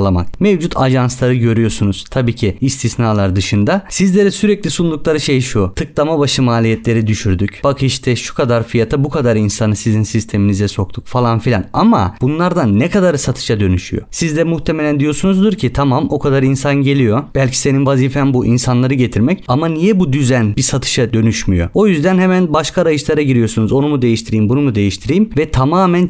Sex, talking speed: male, 165 wpm